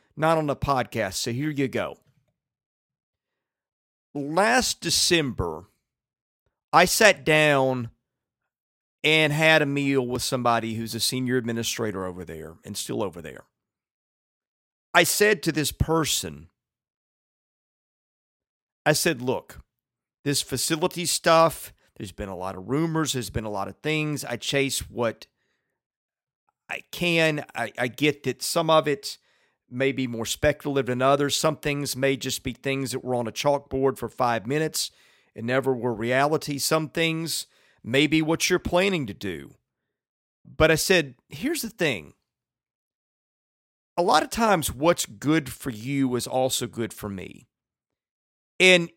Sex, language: male, English